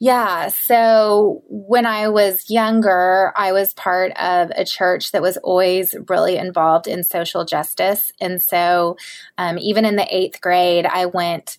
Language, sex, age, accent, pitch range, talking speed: English, female, 20-39, American, 175-195 Hz, 155 wpm